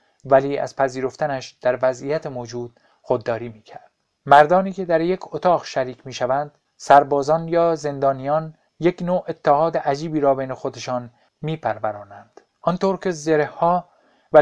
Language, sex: Persian, male